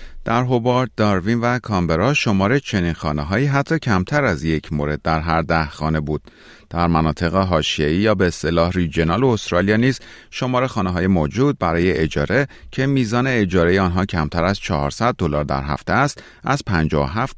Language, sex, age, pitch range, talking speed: Persian, male, 30-49, 80-110 Hz, 160 wpm